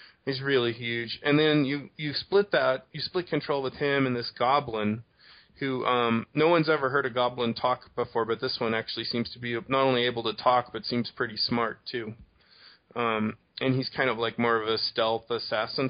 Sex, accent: male, American